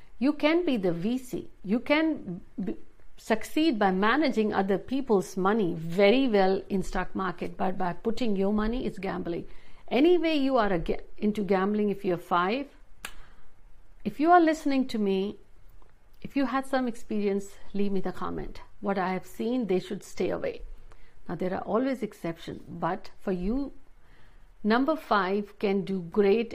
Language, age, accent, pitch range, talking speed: Hindi, 60-79, native, 185-220 Hz, 165 wpm